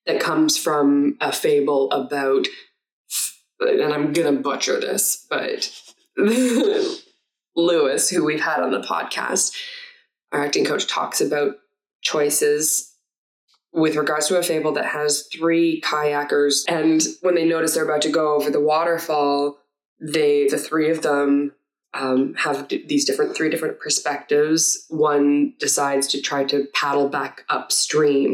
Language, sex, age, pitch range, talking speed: English, female, 20-39, 140-180 Hz, 140 wpm